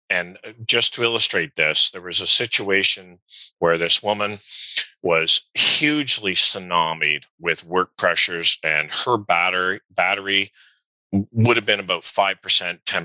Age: 40-59